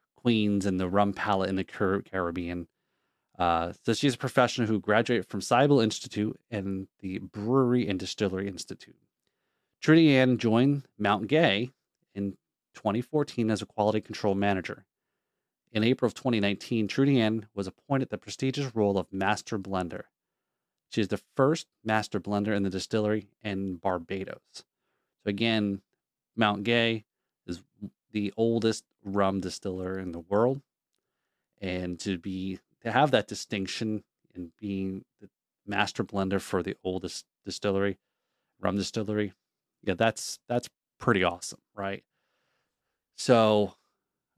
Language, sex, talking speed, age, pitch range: English, male, 135 wpm, 30-49, 95-115 Hz